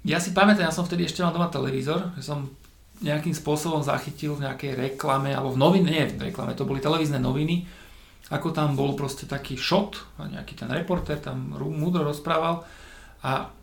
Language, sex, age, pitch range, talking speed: Slovak, male, 40-59, 140-185 Hz, 185 wpm